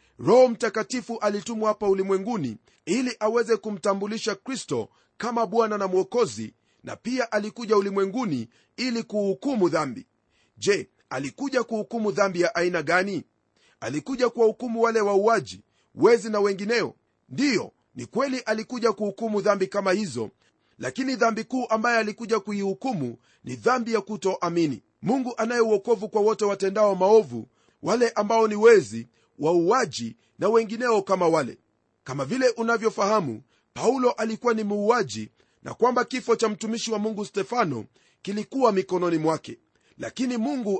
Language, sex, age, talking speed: Swahili, male, 40-59, 130 wpm